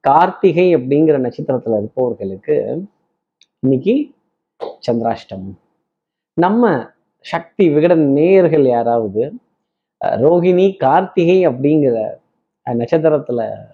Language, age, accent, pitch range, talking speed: Tamil, 20-39, native, 125-170 Hz, 65 wpm